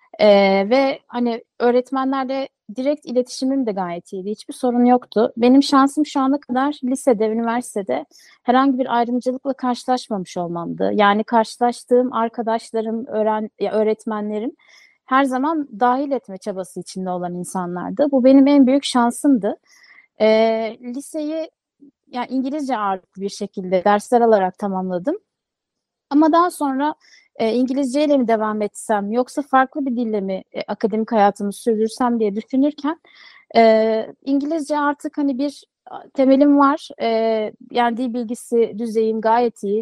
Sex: female